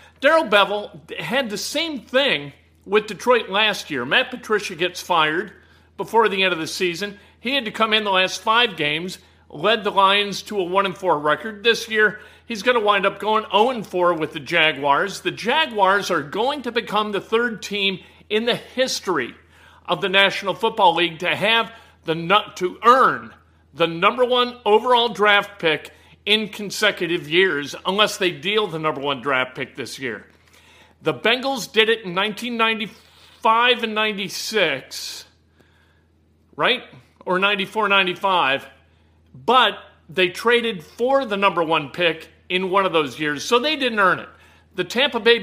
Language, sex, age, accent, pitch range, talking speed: English, male, 50-69, American, 160-220 Hz, 165 wpm